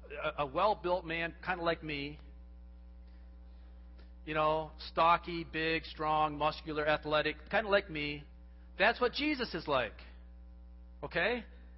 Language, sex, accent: English, male, American